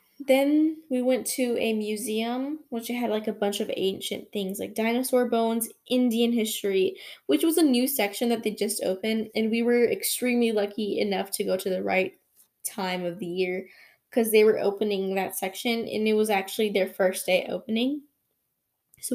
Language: English